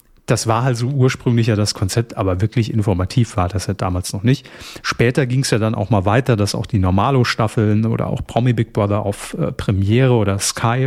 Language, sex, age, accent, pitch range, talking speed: German, male, 40-59, German, 110-130 Hz, 215 wpm